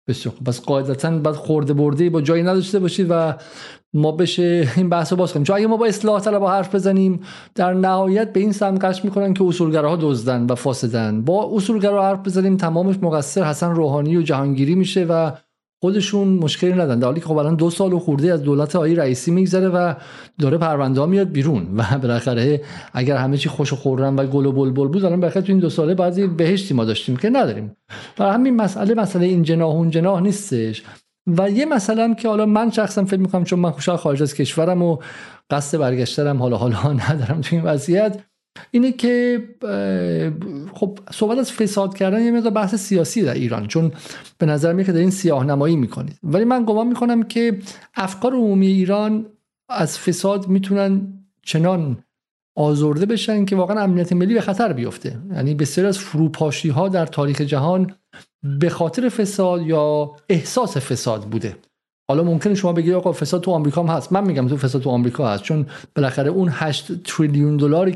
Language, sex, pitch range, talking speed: Persian, male, 145-195 Hz, 180 wpm